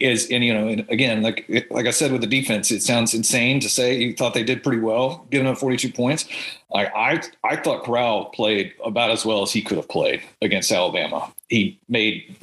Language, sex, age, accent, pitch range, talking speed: English, male, 40-59, American, 110-135 Hz, 220 wpm